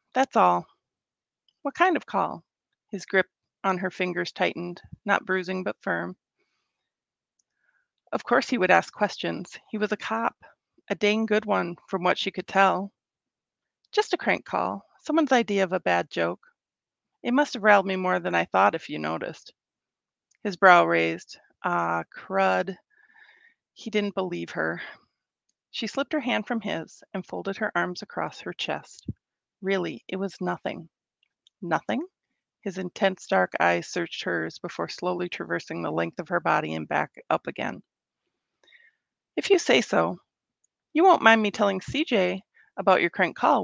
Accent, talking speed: American, 160 wpm